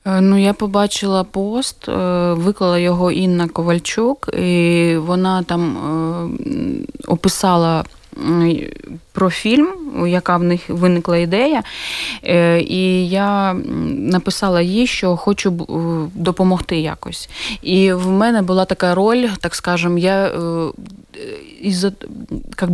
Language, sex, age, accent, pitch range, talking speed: Ukrainian, female, 20-39, native, 165-190 Hz, 105 wpm